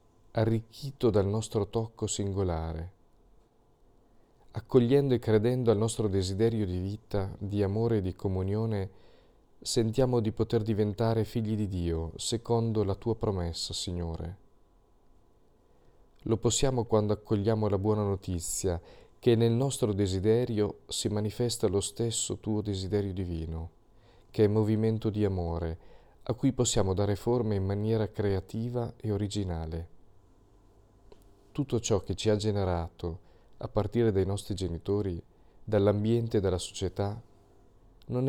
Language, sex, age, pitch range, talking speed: Italian, male, 40-59, 95-115 Hz, 125 wpm